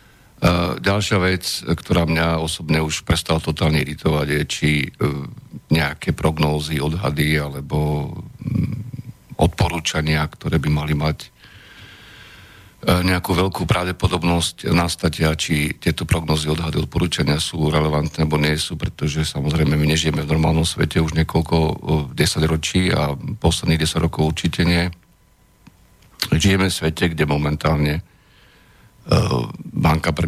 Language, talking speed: Slovak, 115 wpm